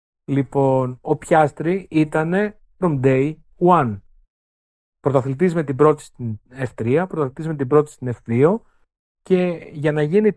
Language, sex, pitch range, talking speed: Greek, male, 130-180 Hz, 135 wpm